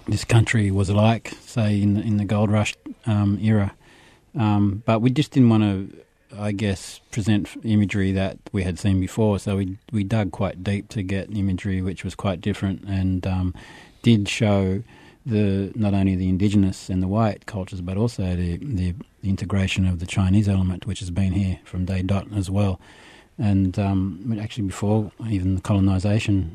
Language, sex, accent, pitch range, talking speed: English, male, Australian, 95-105 Hz, 185 wpm